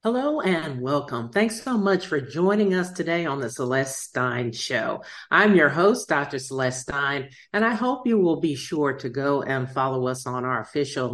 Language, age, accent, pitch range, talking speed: English, 50-69, American, 125-170 Hz, 195 wpm